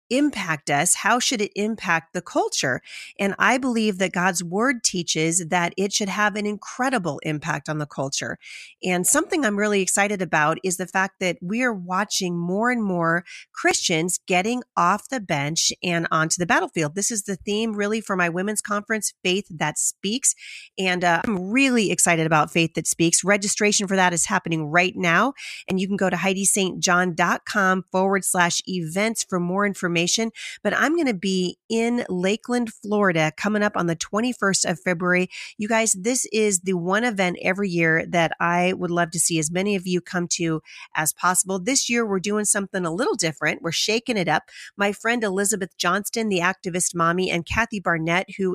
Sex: female